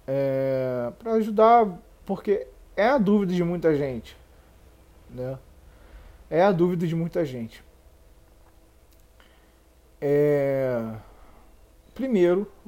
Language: Portuguese